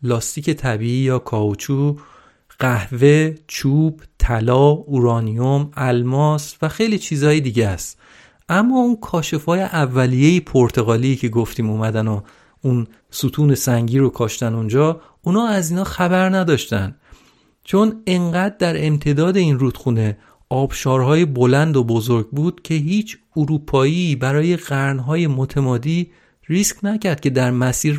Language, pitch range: Persian, 125-165 Hz